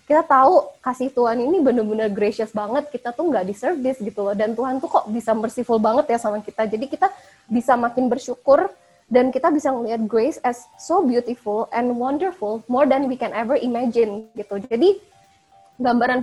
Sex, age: female, 20-39